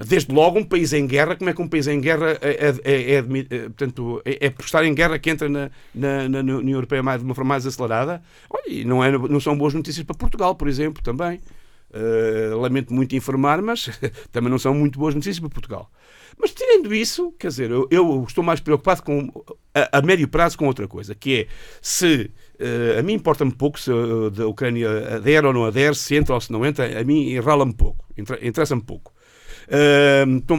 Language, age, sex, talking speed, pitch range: Portuguese, 50-69, male, 205 wpm, 130-175 Hz